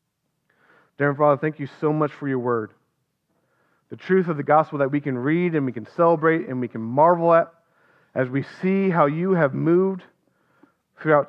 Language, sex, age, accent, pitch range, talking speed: English, male, 40-59, American, 125-165 Hz, 185 wpm